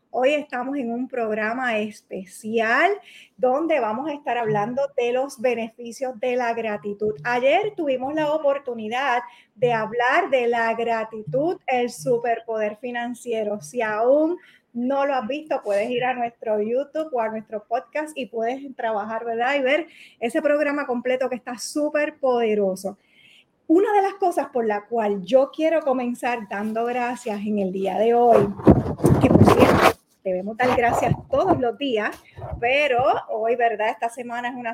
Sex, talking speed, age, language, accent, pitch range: female, 155 wpm, 30-49, Spanish, American, 225-275 Hz